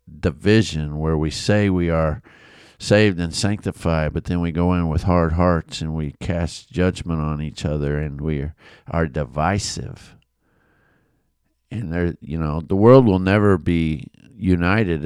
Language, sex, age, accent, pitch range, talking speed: English, male, 50-69, American, 80-105 Hz, 155 wpm